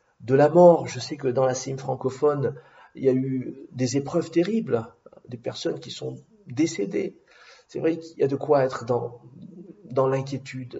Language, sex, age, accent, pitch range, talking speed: French, male, 50-69, French, 120-150 Hz, 185 wpm